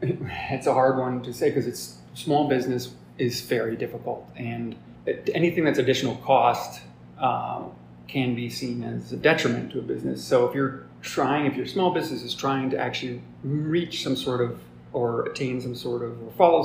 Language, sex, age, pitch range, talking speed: English, male, 30-49, 120-135 Hz, 185 wpm